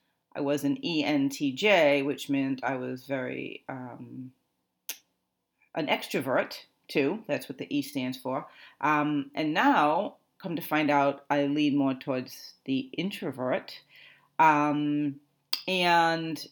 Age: 40-59